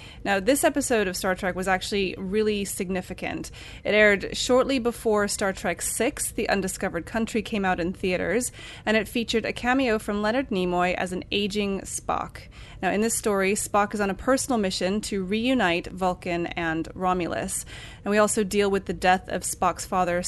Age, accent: 20-39, American